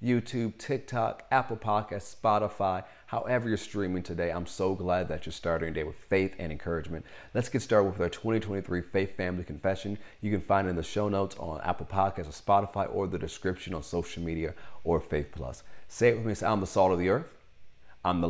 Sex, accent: male, American